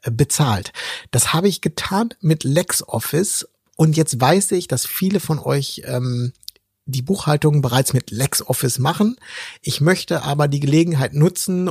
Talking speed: 145 wpm